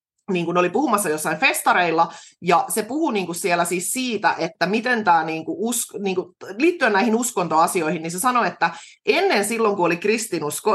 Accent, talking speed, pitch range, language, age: native, 180 wpm, 165-210 Hz, Finnish, 20-39